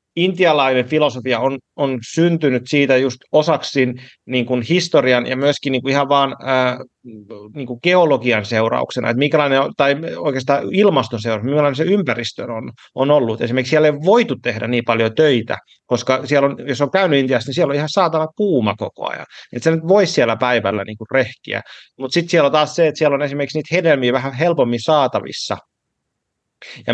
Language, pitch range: Finnish, 125-155 Hz